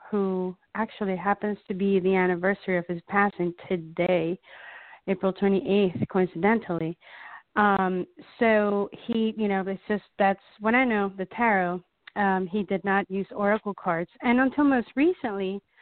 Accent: American